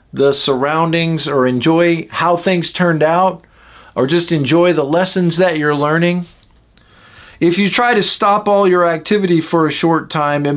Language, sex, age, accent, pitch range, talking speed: English, male, 40-59, American, 135-180 Hz, 165 wpm